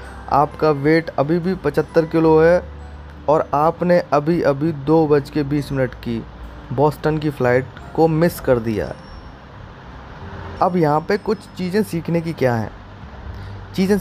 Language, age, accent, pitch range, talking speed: Hindi, 20-39, native, 125-170 Hz, 140 wpm